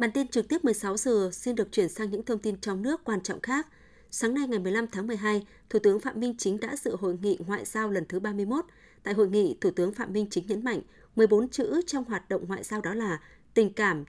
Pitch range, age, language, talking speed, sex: 190-235 Hz, 20-39, Vietnamese, 250 wpm, female